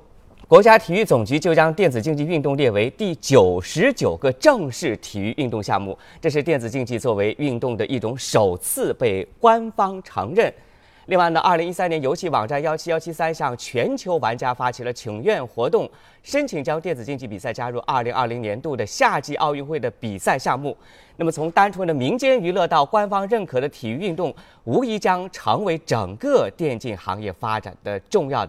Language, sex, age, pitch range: Chinese, male, 30-49, 120-185 Hz